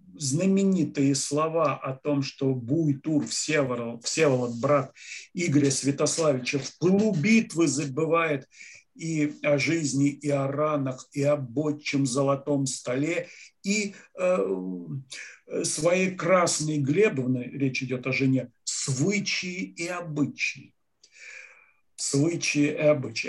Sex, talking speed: male, 100 wpm